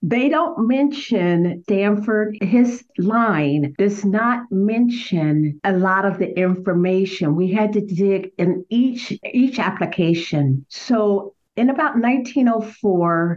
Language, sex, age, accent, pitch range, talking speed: English, female, 50-69, American, 175-230 Hz, 115 wpm